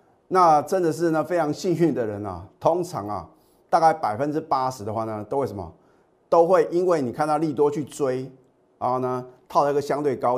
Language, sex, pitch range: Chinese, male, 115-165 Hz